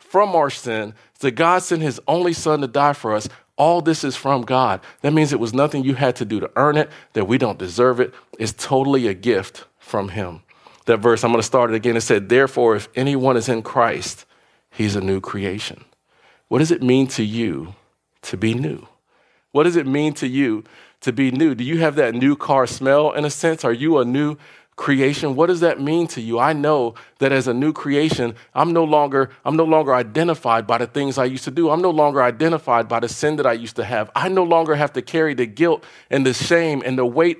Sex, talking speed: male, 235 wpm